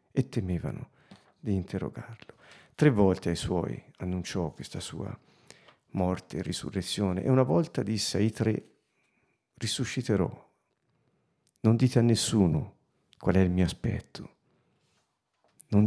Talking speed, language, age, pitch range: 115 wpm, Italian, 50-69, 95-120 Hz